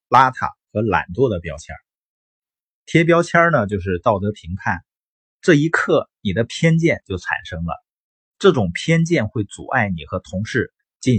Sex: male